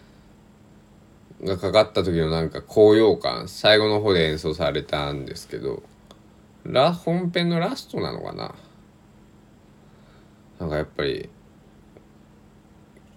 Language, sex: Japanese, male